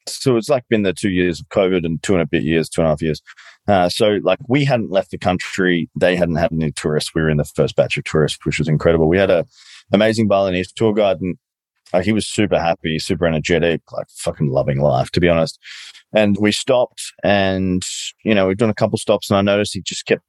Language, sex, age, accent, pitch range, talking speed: English, male, 30-49, Australian, 80-100 Hz, 245 wpm